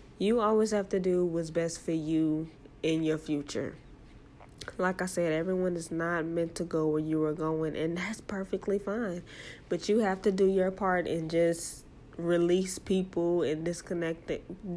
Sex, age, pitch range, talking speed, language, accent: female, 20-39, 160-190 Hz, 170 wpm, English, American